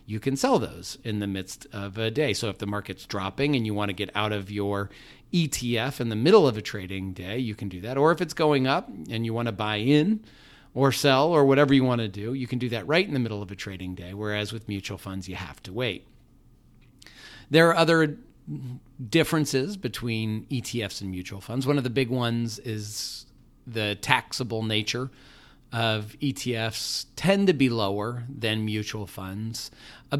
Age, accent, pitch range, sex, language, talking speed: 40-59, American, 105-135 Hz, male, English, 205 wpm